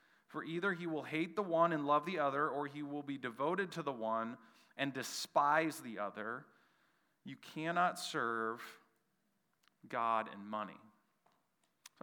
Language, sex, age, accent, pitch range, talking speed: English, male, 30-49, American, 115-160 Hz, 150 wpm